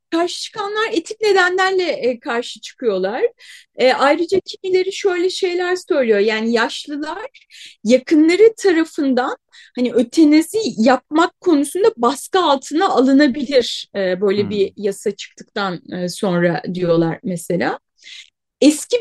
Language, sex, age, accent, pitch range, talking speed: Turkish, female, 30-49, native, 245-370 Hz, 95 wpm